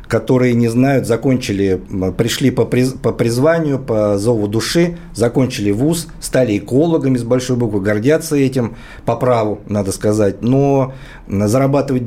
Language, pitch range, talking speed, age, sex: Russian, 100-125 Hz, 135 wpm, 50-69, male